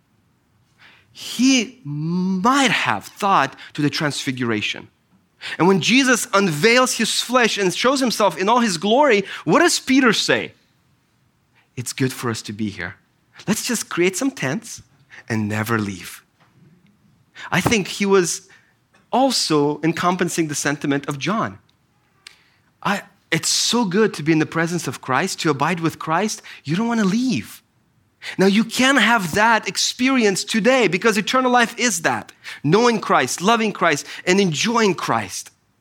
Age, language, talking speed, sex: 30-49, English, 145 wpm, male